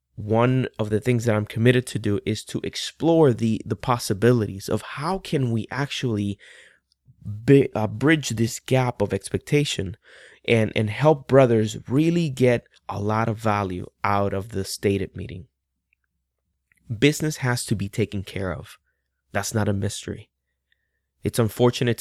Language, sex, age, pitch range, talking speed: English, male, 20-39, 100-125 Hz, 145 wpm